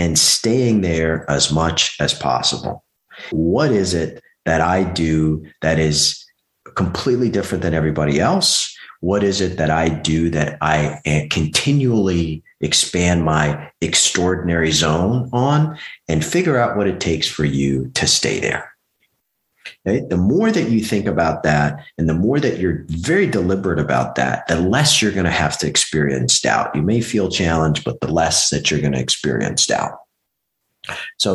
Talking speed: 165 wpm